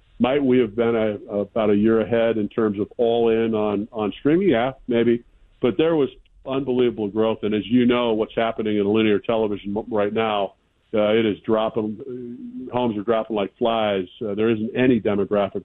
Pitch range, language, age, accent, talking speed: 105-125 Hz, English, 50-69, American, 200 wpm